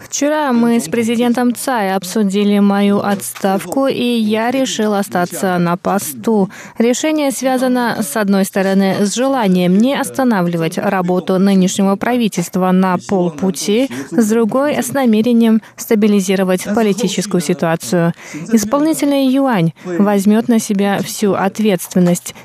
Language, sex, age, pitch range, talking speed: Russian, female, 20-39, 185-245 Hz, 115 wpm